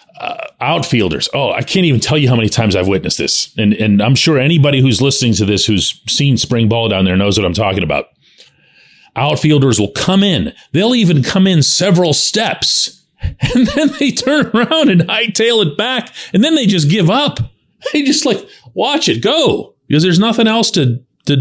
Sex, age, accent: male, 40-59, American